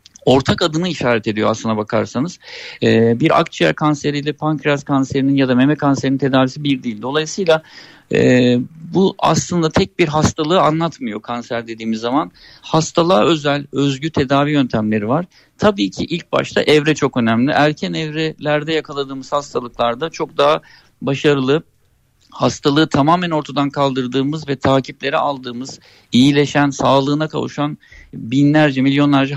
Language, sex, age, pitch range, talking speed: Turkish, male, 50-69, 130-155 Hz, 125 wpm